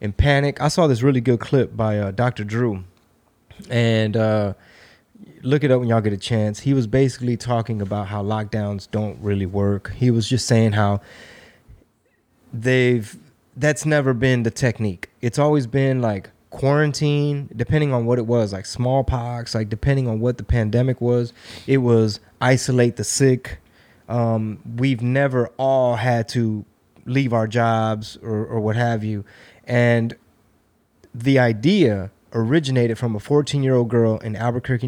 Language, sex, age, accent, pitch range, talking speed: English, male, 20-39, American, 110-130 Hz, 155 wpm